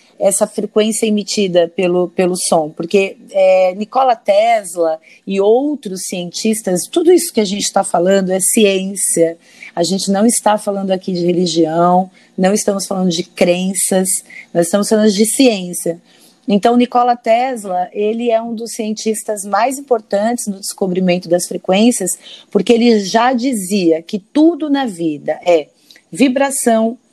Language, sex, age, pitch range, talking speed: Portuguese, female, 30-49, 185-235 Hz, 140 wpm